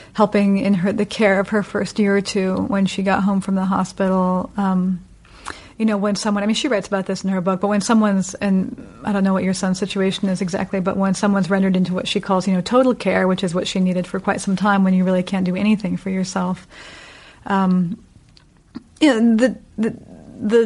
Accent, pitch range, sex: American, 190-215 Hz, female